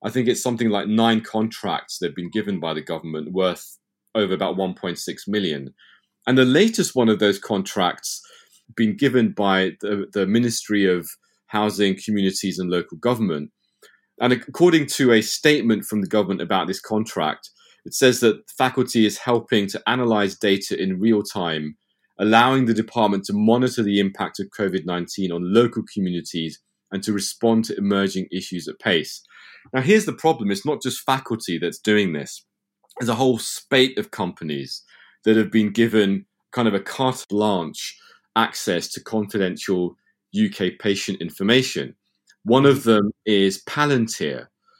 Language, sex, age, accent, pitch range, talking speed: English, male, 30-49, British, 95-125 Hz, 160 wpm